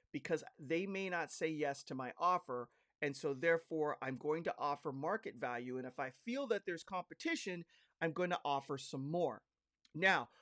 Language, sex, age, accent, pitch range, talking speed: English, male, 40-59, American, 140-195 Hz, 180 wpm